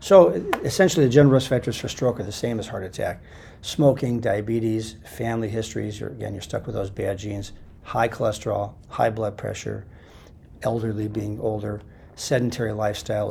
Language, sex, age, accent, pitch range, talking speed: English, male, 40-59, American, 105-135 Hz, 160 wpm